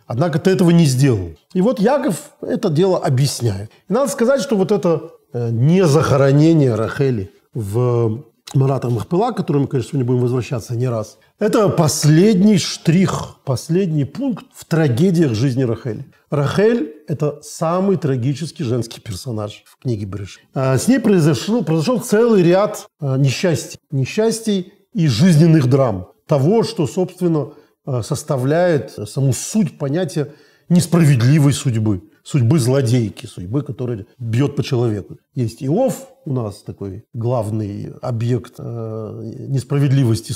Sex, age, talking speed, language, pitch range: male, 40-59, 125 wpm, Russian, 125-180 Hz